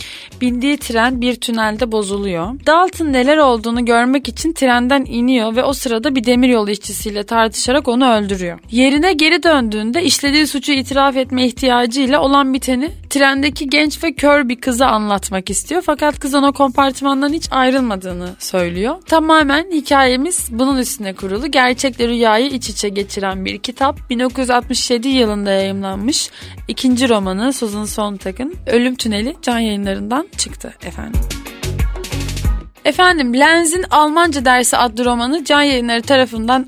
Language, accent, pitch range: Turkish, native, 220-275 Hz